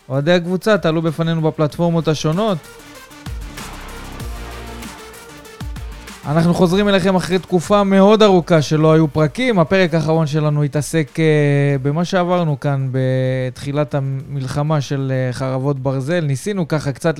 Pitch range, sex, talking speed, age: 140-170 Hz, male, 110 wpm, 20-39